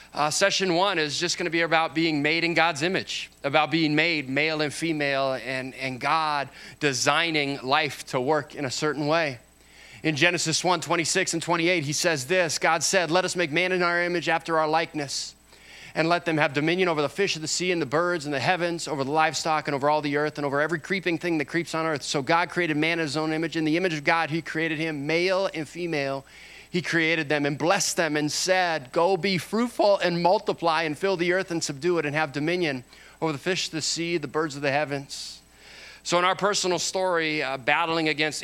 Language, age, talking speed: English, 30-49, 230 wpm